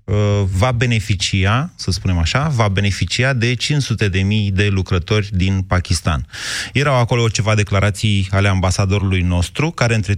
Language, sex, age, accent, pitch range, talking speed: Romanian, male, 30-49, native, 100-130 Hz, 130 wpm